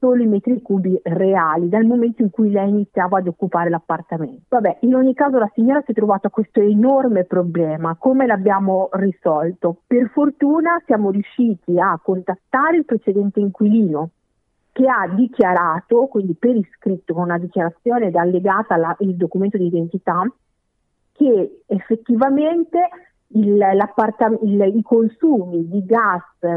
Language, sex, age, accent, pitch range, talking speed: Italian, female, 50-69, native, 180-235 Hz, 140 wpm